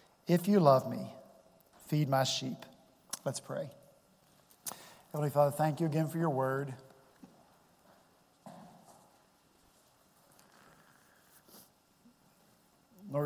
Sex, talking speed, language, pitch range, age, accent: male, 80 wpm, English, 135-165 Hz, 50-69, American